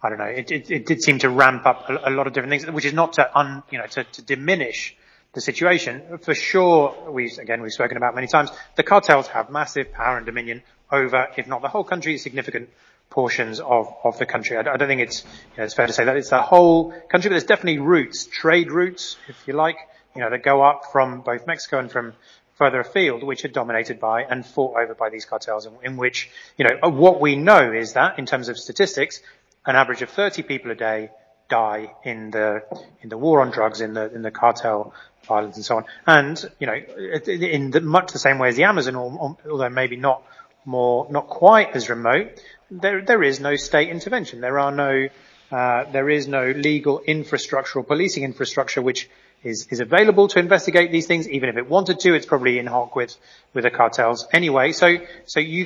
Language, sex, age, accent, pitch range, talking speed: English, male, 30-49, British, 120-165 Hz, 220 wpm